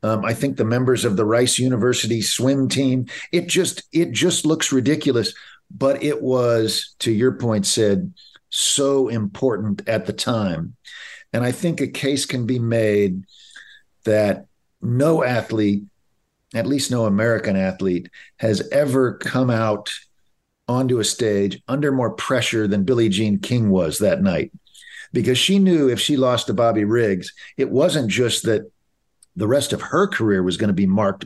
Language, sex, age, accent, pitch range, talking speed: English, male, 50-69, American, 105-135 Hz, 165 wpm